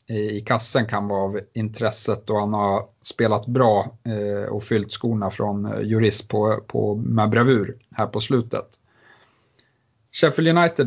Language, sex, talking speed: Swedish, male, 145 wpm